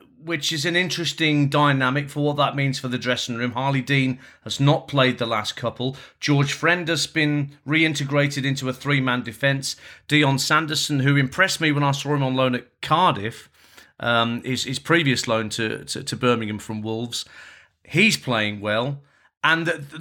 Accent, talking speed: British, 175 wpm